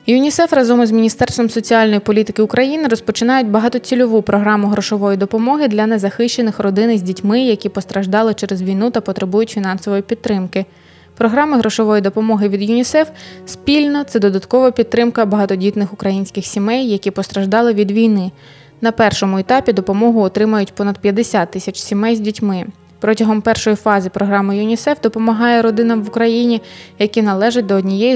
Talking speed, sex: 140 wpm, female